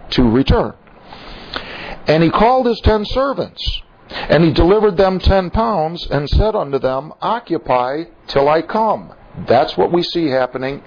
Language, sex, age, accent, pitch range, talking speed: English, male, 50-69, American, 115-170 Hz, 150 wpm